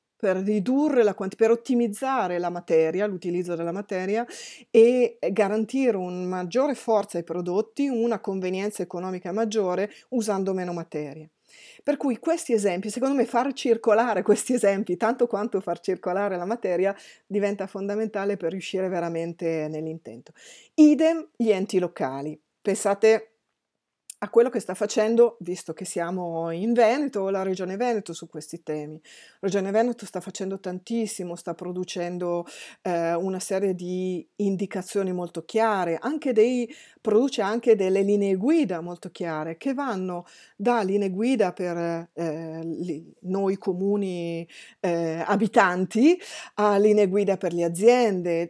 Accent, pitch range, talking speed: native, 180-230 Hz, 130 wpm